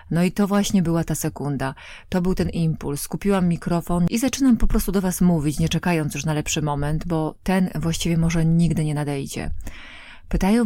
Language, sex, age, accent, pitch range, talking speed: Polish, female, 30-49, native, 150-180 Hz, 190 wpm